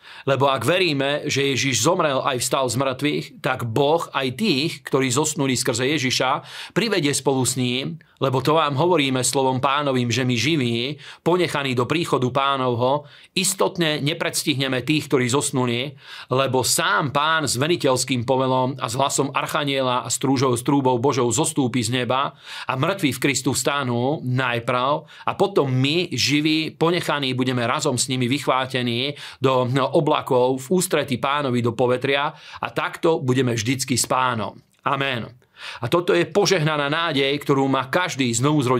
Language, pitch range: Slovak, 130-155 Hz